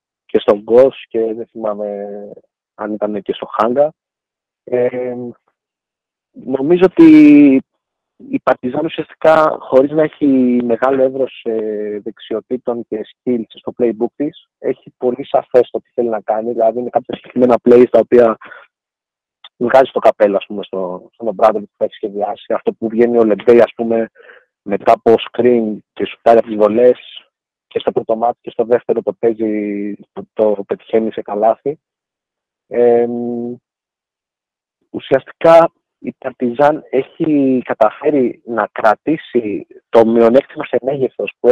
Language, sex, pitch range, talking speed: Greek, male, 110-135 Hz, 135 wpm